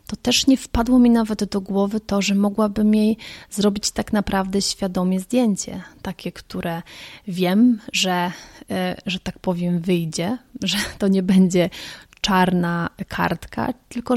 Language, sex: Polish, female